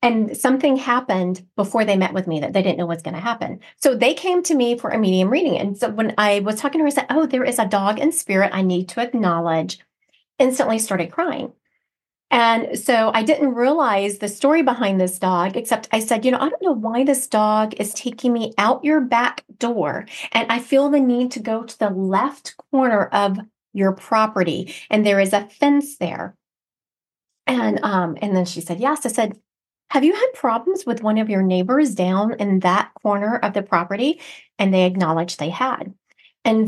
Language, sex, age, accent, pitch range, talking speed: English, female, 40-59, American, 190-255 Hz, 210 wpm